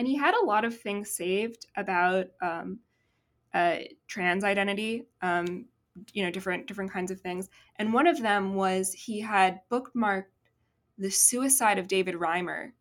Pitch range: 180-205 Hz